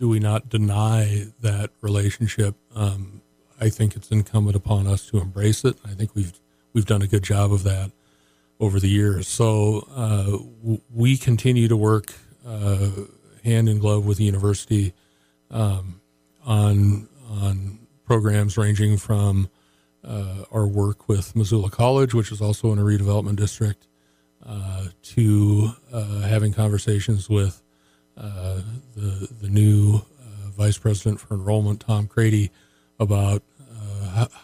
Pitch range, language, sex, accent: 100-110 Hz, English, male, American